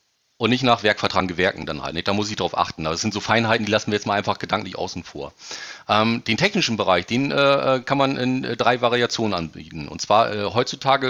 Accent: German